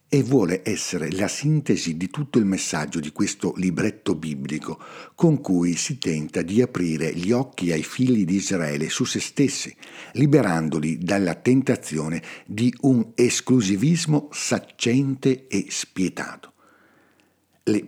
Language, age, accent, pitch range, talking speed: Italian, 60-79, native, 90-125 Hz, 130 wpm